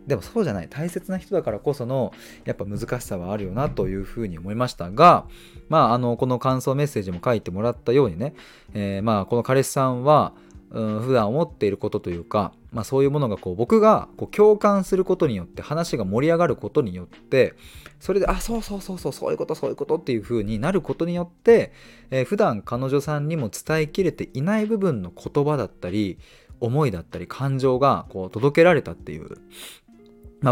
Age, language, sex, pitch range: 20-39, Japanese, male, 100-150 Hz